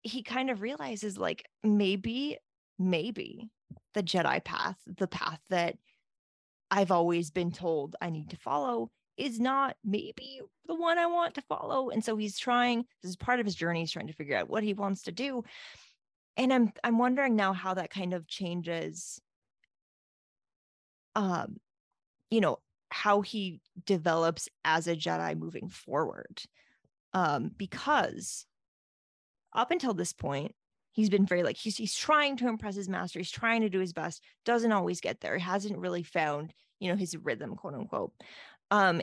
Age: 20-39